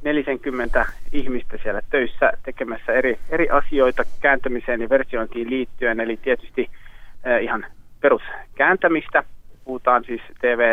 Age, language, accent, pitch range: 30-49, Finnish, native, 115-140 Hz